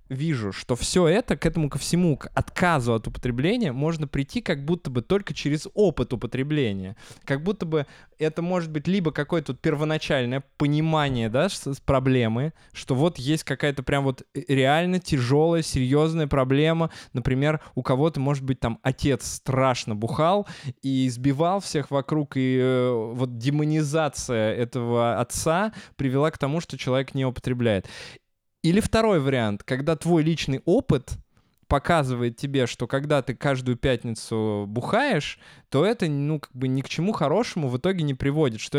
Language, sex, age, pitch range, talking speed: Russian, male, 20-39, 125-155 Hz, 145 wpm